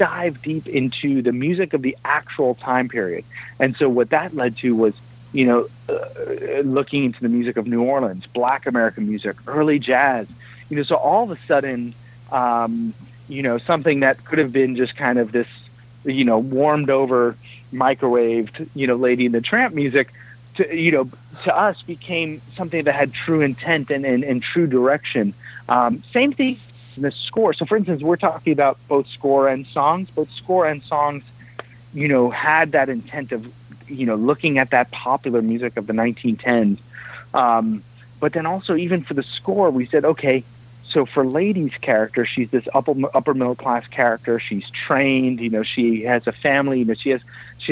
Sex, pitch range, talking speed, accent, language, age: male, 120-145 Hz, 185 wpm, American, English, 30-49